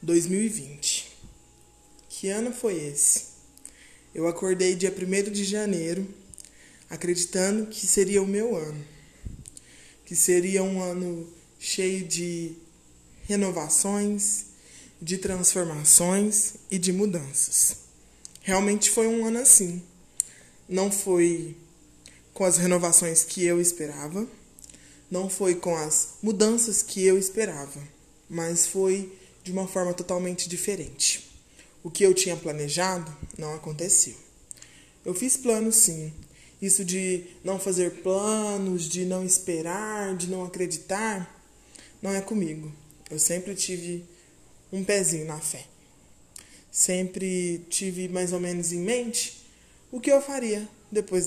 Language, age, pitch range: Portuguese, 20-39, 165-195 Hz